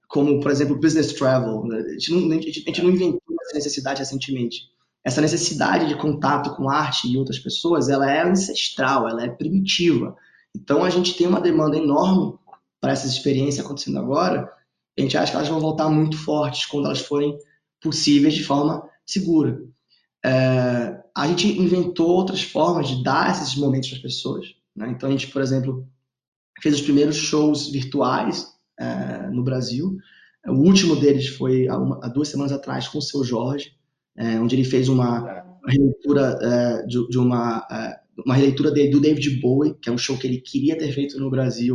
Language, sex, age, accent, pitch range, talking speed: Portuguese, male, 20-39, Brazilian, 130-160 Hz, 185 wpm